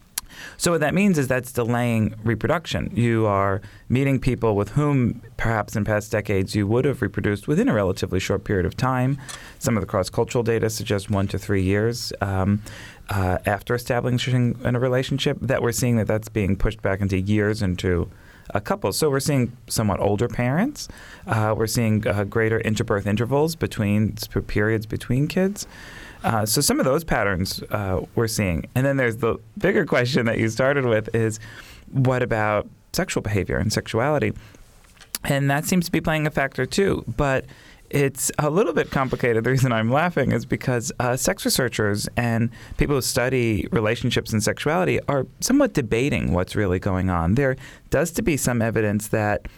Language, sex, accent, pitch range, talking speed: English, male, American, 105-125 Hz, 180 wpm